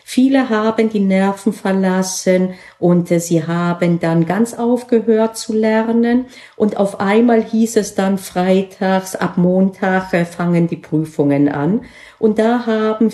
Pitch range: 175-225 Hz